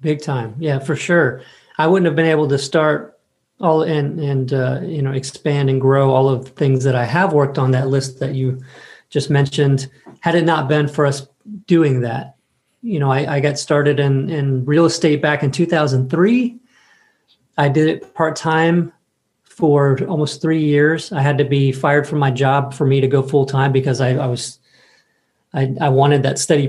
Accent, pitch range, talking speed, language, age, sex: American, 135-160 Hz, 200 wpm, English, 40-59, male